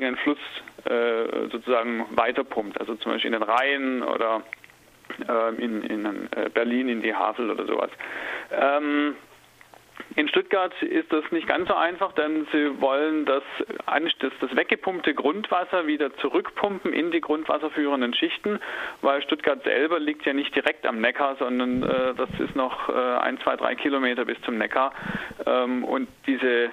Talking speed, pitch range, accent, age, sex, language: 155 wpm, 125-175 Hz, German, 40-59, male, German